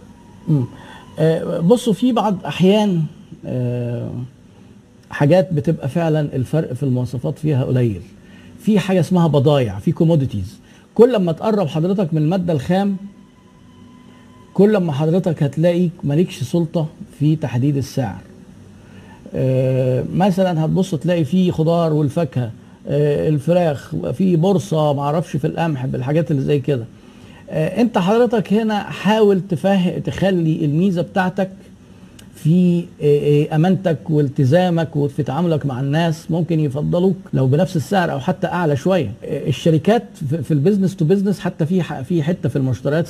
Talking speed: 125 wpm